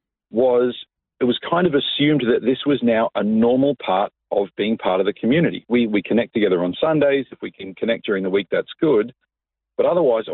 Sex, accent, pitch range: male, Australian, 115-150 Hz